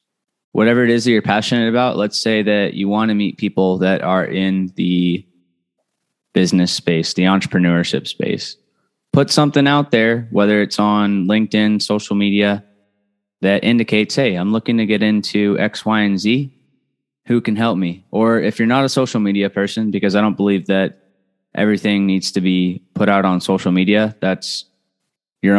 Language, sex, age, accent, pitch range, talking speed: English, male, 20-39, American, 95-115 Hz, 175 wpm